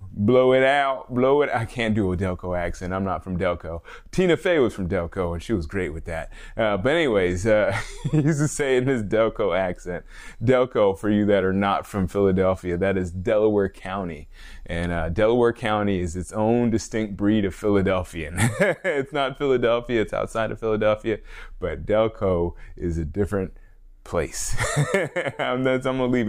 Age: 20-39